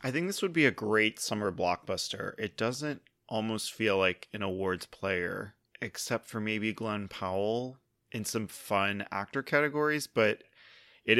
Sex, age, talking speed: male, 20-39, 155 wpm